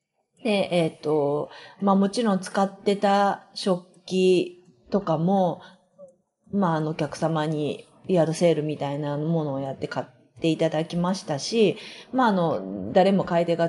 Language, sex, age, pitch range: Japanese, female, 40-59, 165-240 Hz